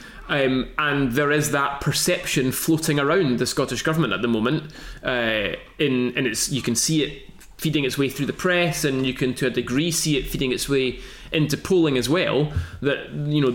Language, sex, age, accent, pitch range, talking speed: English, male, 20-39, British, 120-150 Hz, 205 wpm